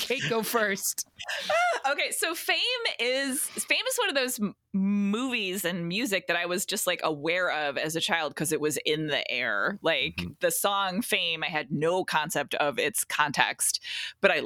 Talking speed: 185 wpm